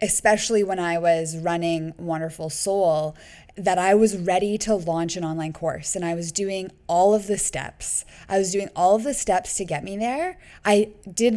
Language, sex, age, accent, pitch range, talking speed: English, female, 20-39, American, 170-200 Hz, 195 wpm